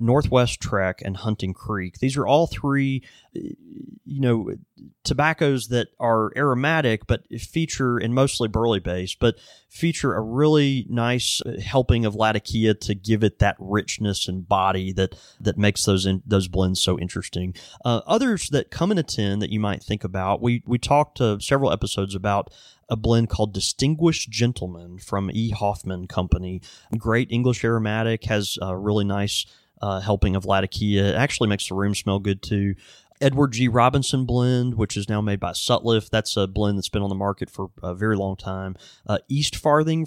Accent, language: American, English